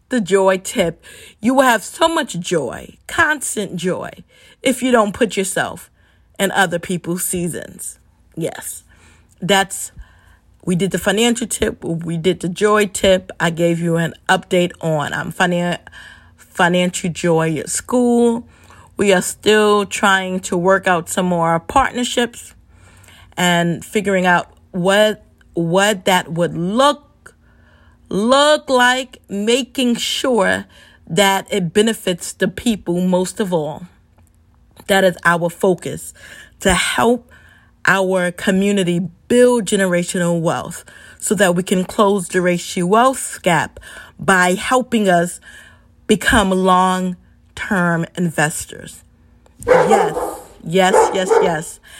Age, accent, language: 40-59, American, English